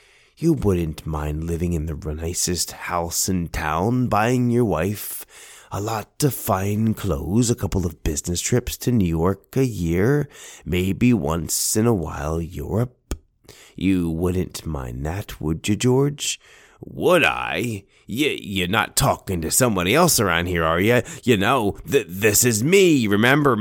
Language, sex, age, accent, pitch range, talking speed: English, male, 30-49, American, 90-125 Hz, 150 wpm